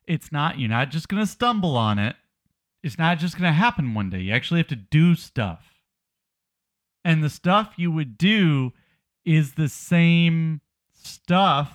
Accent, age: American, 40-59